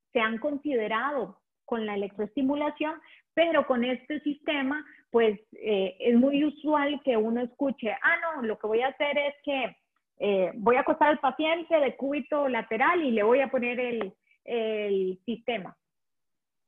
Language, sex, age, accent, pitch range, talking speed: Spanish, female, 30-49, Colombian, 225-290 Hz, 160 wpm